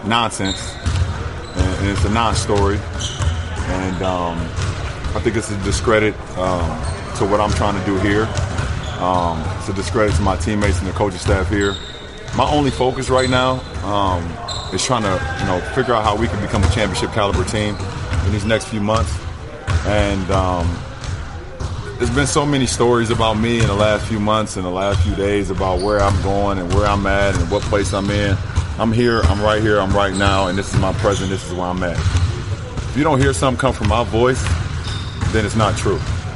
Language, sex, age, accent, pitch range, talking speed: English, male, 20-39, American, 95-110 Hz, 200 wpm